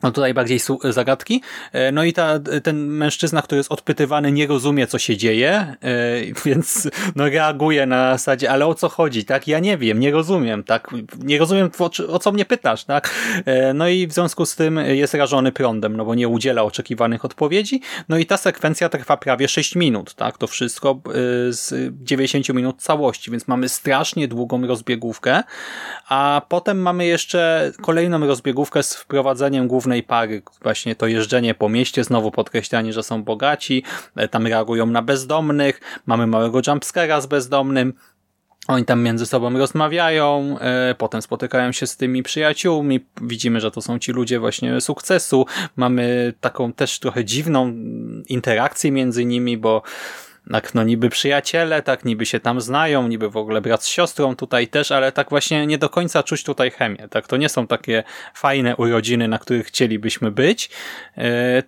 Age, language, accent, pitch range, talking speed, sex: 30-49, Polish, native, 120-155 Hz, 165 wpm, male